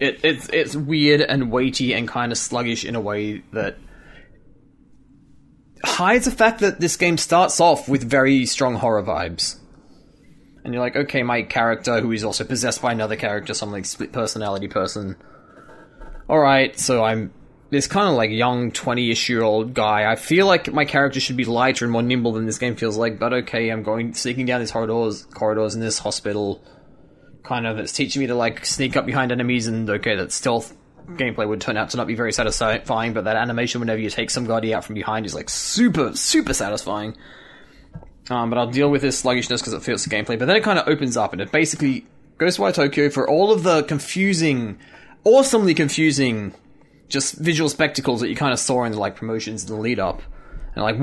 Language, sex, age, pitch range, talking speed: English, male, 20-39, 110-145 Hz, 205 wpm